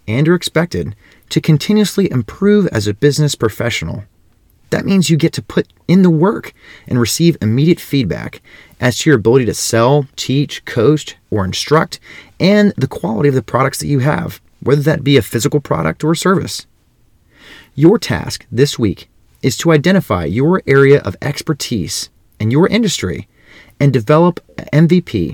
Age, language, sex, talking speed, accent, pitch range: 30-49, English, male, 165 wpm, American, 105-160 Hz